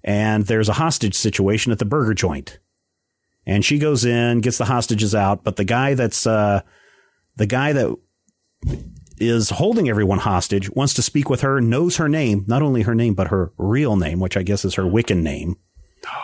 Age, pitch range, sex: 40-59, 100-130 Hz, male